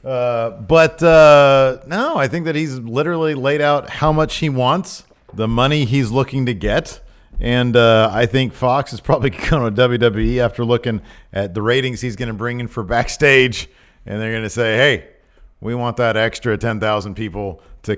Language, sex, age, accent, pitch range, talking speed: English, male, 50-69, American, 110-155 Hz, 185 wpm